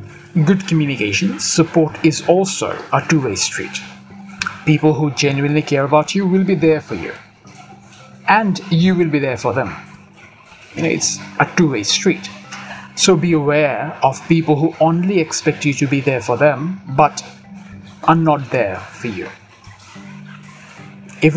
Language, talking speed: English, 145 wpm